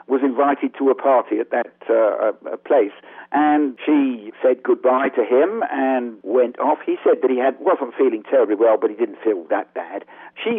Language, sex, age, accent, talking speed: English, male, 60-79, British, 200 wpm